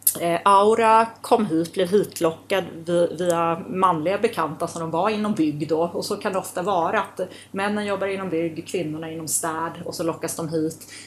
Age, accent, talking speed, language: 30-49, native, 180 wpm, Swedish